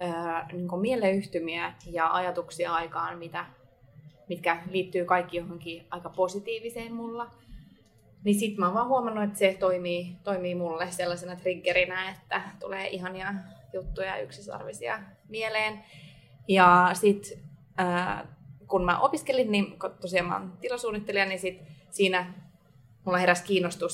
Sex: female